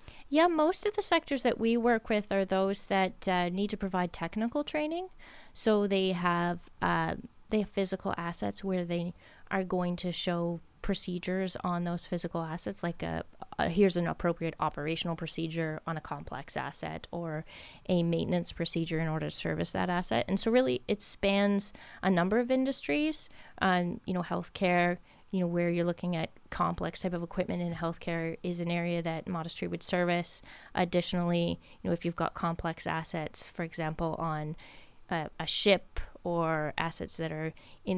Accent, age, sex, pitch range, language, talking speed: American, 20-39, female, 165-190 Hz, English, 175 wpm